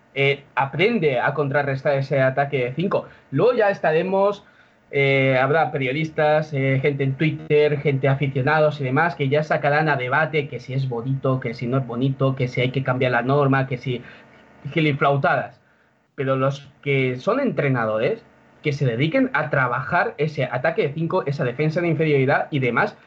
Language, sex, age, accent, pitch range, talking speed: Spanish, male, 20-39, Spanish, 130-155 Hz, 170 wpm